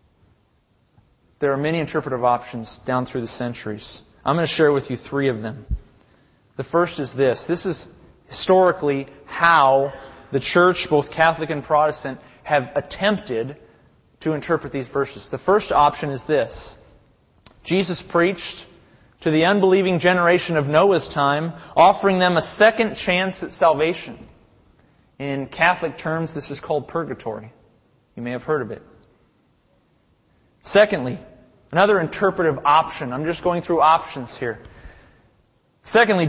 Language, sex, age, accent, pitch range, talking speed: English, male, 30-49, American, 135-185 Hz, 135 wpm